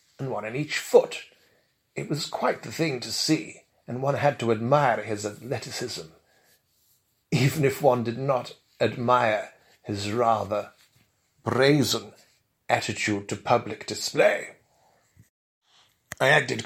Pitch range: 115-155 Hz